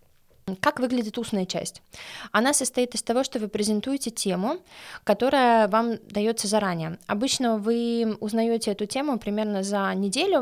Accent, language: native, Russian